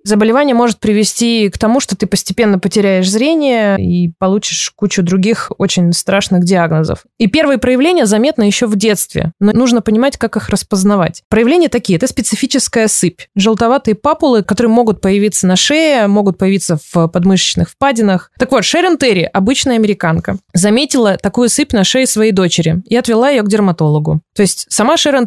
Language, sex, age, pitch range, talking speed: Russian, female, 20-39, 195-245 Hz, 165 wpm